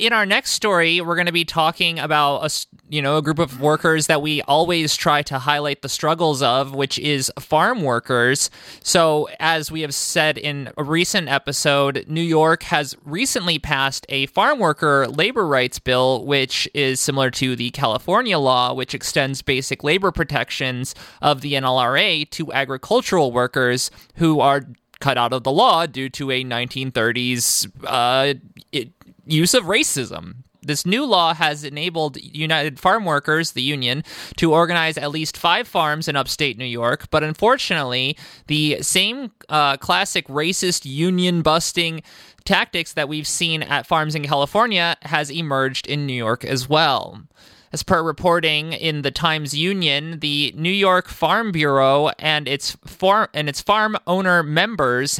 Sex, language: male, English